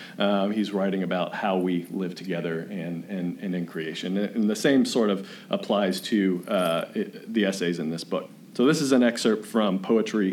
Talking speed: 185 wpm